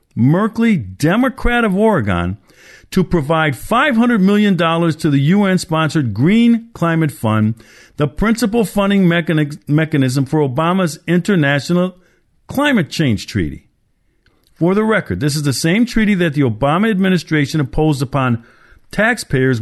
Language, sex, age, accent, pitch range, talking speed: English, male, 50-69, American, 140-195 Hz, 120 wpm